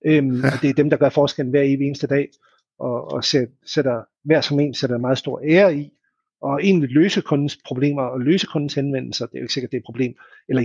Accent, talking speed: native, 230 wpm